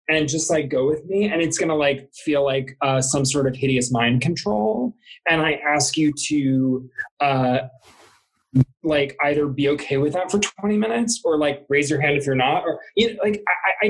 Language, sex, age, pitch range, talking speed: English, male, 20-39, 145-230 Hz, 200 wpm